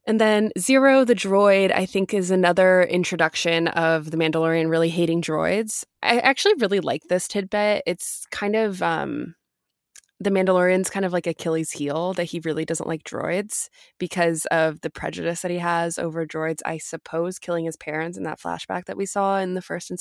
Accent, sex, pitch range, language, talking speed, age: American, female, 165-195 Hz, English, 190 wpm, 20-39